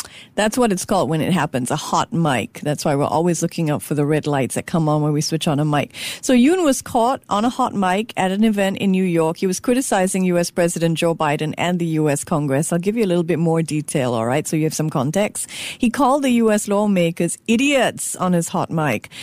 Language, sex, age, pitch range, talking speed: English, female, 50-69, 170-230 Hz, 245 wpm